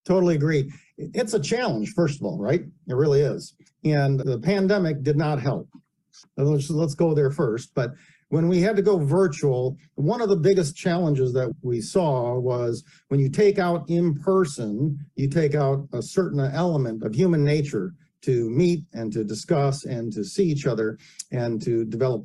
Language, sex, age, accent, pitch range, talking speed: English, male, 50-69, American, 135-175 Hz, 180 wpm